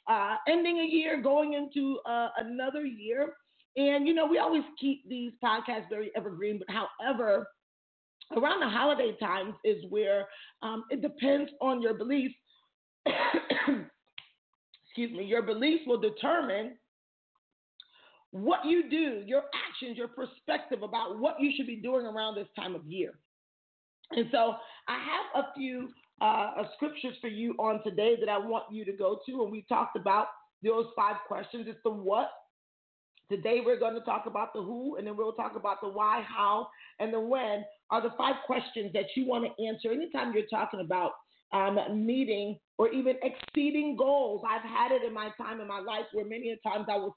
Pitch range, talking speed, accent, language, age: 215-280 Hz, 180 wpm, American, English, 40-59